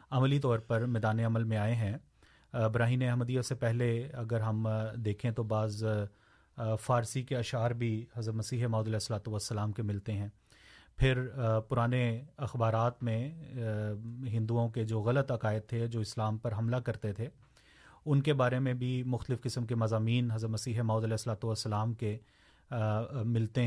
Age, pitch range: 30-49, 110-125 Hz